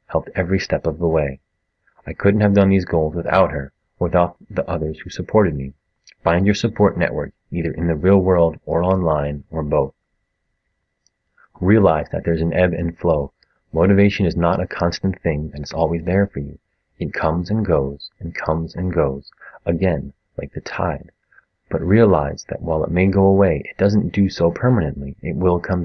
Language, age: English, 30-49